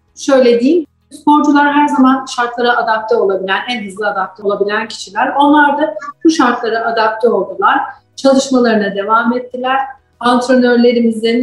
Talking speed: 120 wpm